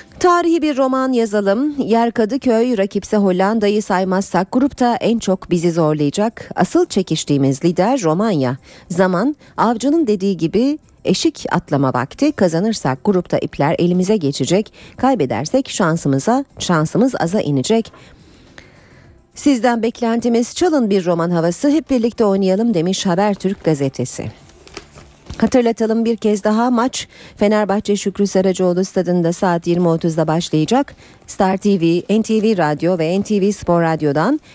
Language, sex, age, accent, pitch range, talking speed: Turkish, female, 40-59, native, 165-235 Hz, 115 wpm